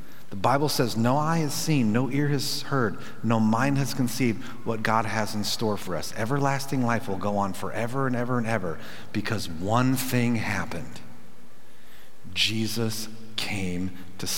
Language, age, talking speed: English, 40-59, 165 wpm